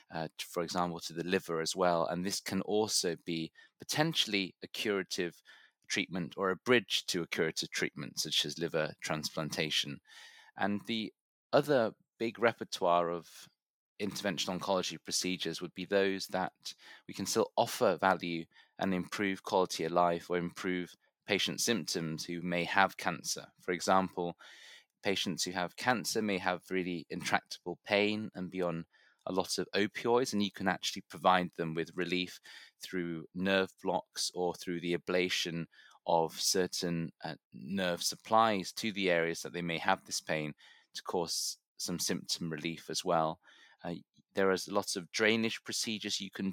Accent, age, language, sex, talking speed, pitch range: British, 20-39, English, male, 155 wpm, 85-95 Hz